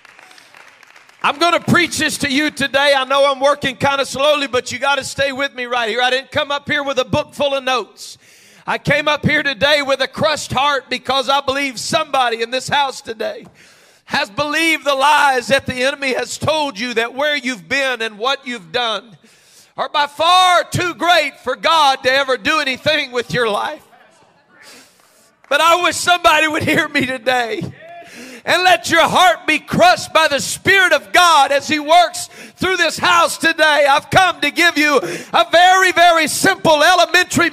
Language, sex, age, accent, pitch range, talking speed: English, male, 40-59, American, 275-340 Hz, 190 wpm